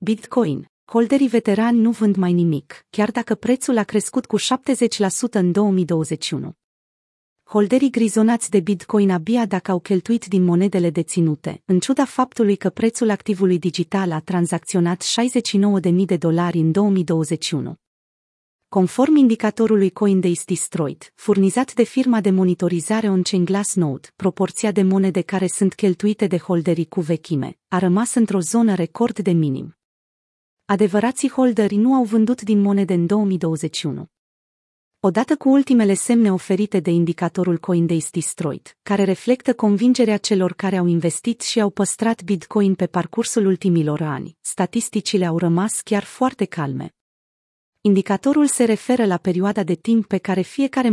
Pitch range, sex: 180-225 Hz, female